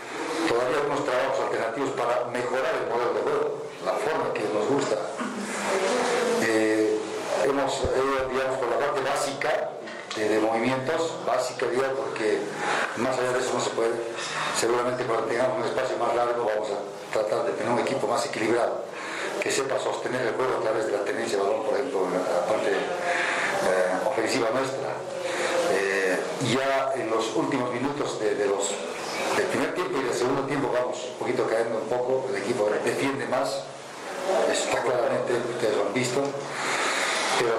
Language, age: Spanish, 50-69